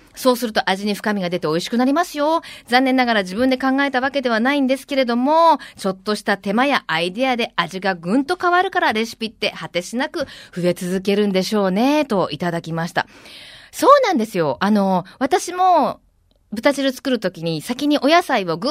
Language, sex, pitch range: Japanese, female, 195-300 Hz